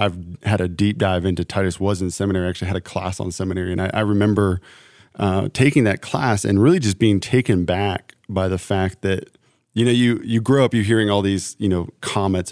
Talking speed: 225 wpm